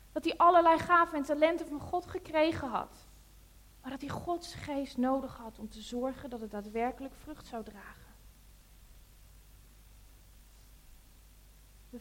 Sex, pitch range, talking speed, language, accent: female, 225-325 Hz, 135 wpm, Dutch, Dutch